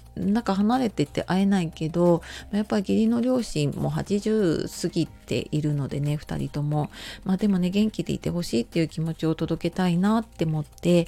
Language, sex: Japanese, female